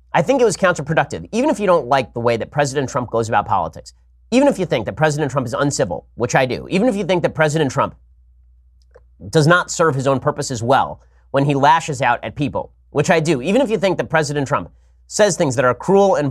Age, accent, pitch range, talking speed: 30-49, American, 135-180 Hz, 245 wpm